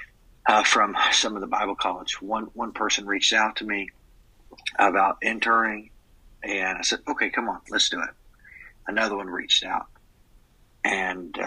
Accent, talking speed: American, 155 wpm